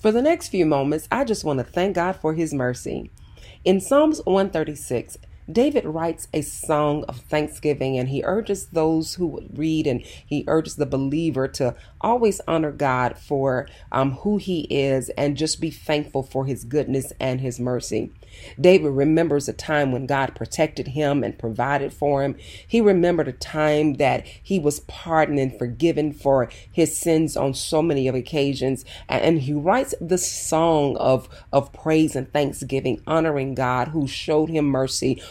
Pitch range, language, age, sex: 130-160 Hz, English, 40-59, female